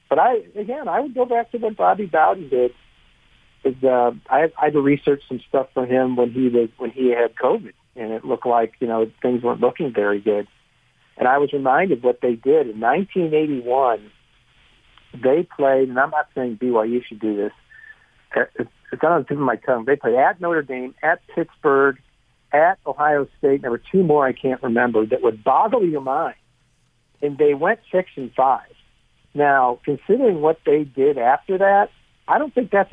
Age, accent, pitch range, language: 50-69, American, 125-185 Hz, English